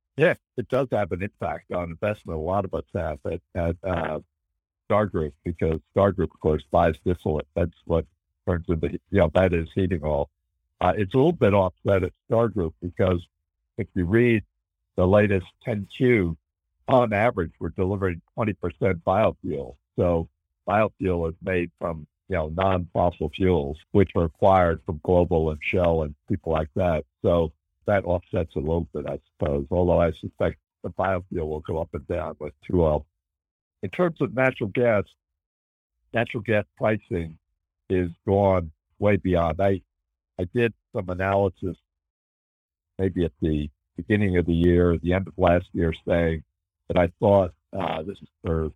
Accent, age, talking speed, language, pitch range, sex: American, 60-79, 165 wpm, English, 80-95 Hz, male